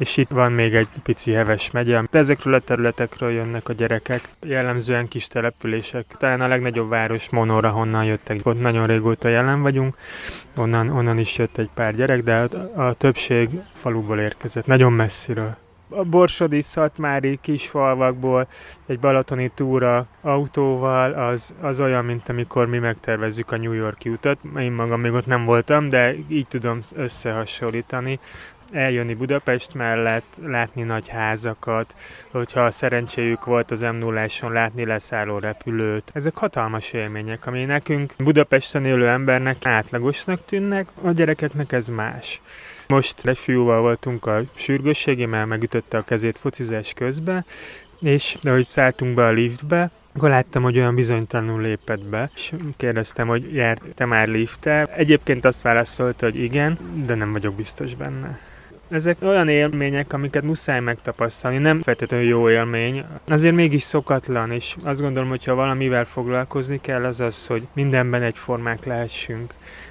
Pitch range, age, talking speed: 115-135 Hz, 20-39, 145 wpm